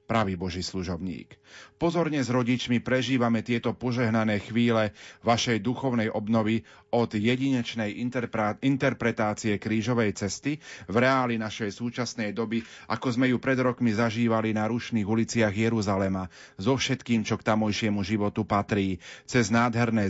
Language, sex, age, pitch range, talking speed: Slovak, male, 30-49, 105-120 Hz, 125 wpm